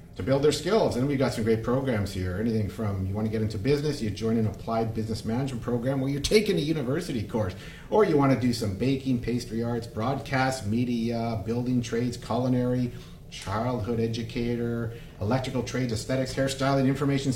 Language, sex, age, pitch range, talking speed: English, male, 50-69, 110-145 Hz, 185 wpm